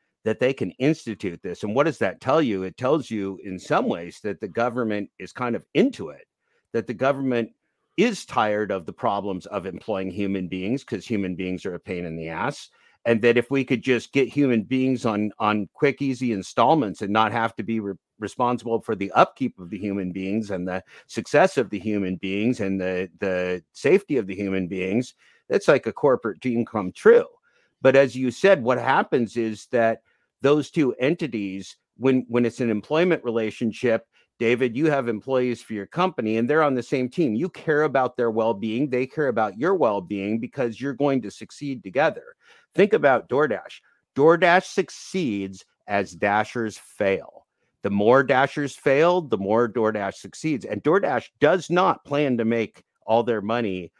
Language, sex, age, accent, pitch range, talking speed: English, male, 50-69, American, 100-135 Hz, 185 wpm